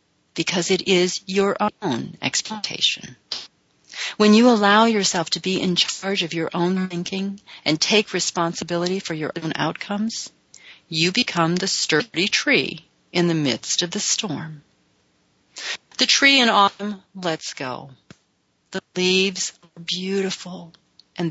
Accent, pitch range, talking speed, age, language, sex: American, 170-205 Hz, 130 wpm, 40-59, English, female